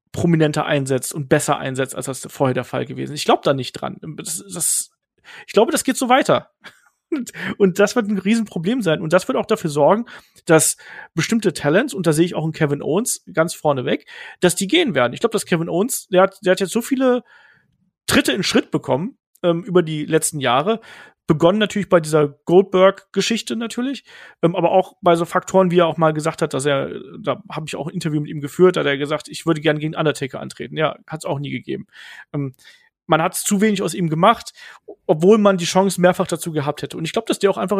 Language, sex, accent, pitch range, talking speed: German, male, German, 155-200 Hz, 225 wpm